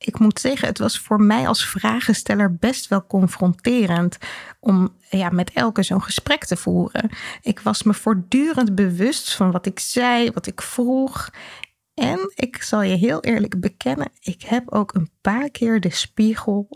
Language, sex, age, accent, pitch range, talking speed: Dutch, female, 20-39, Dutch, 195-245 Hz, 165 wpm